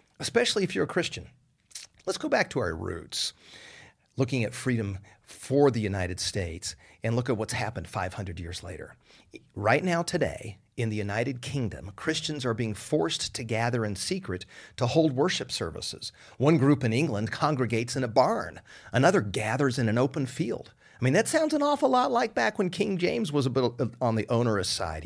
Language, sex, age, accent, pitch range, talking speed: English, male, 40-59, American, 110-155 Hz, 185 wpm